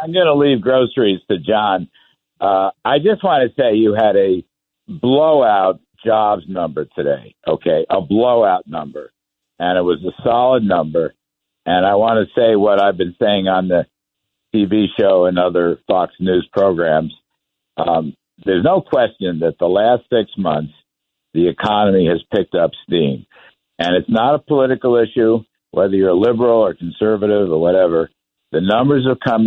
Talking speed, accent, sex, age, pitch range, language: 165 wpm, American, male, 60-79, 95-125 Hz, English